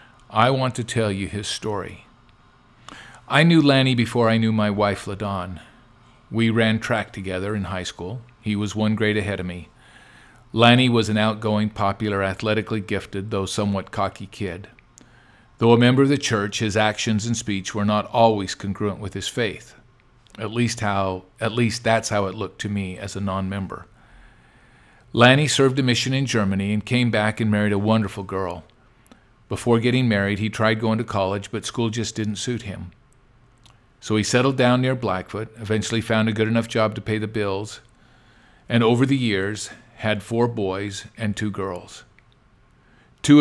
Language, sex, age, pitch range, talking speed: English, male, 50-69, 100-120 Hz, 175 wpm